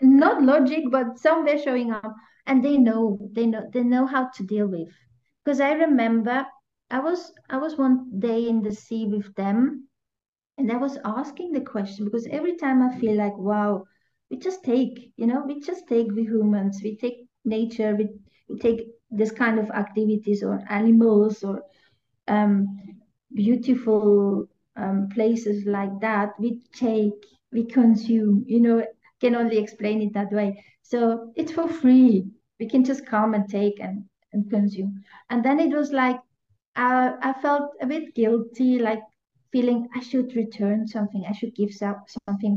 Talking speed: 165 wpm